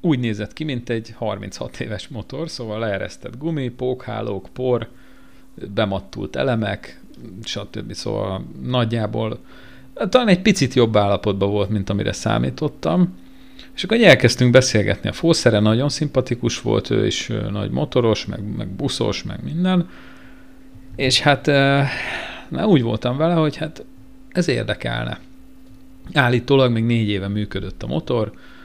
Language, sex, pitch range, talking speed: Hungarian, male, 105-140 Hz, 130 wpm